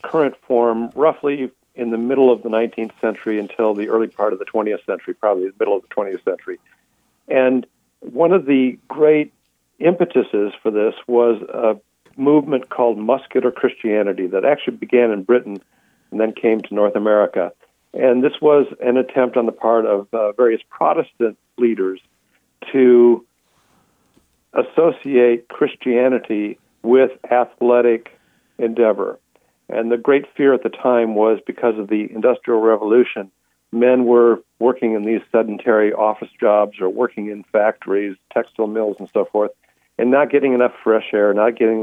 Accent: American